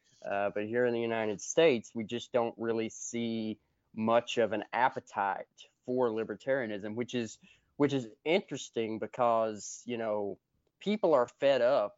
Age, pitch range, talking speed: 20-39, 110-130 Hz, 150 wpm